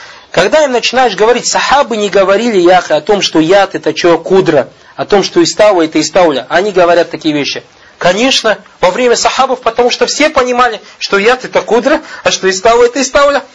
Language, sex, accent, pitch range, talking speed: Russian, male, native, 185-255 Hz, 185 wpm